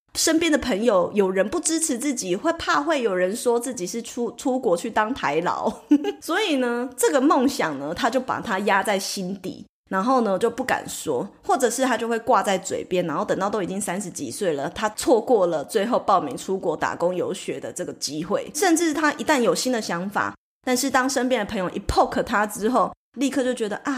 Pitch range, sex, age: 195-270 Hz, female, 20-39